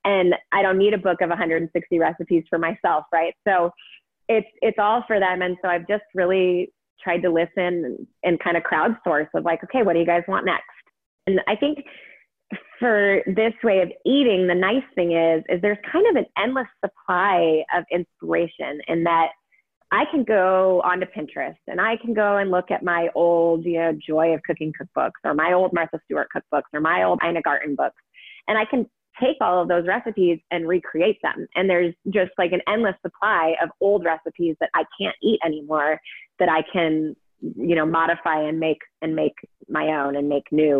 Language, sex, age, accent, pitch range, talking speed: English, female, 30-49, American, 165-200 Hz, 200 wpm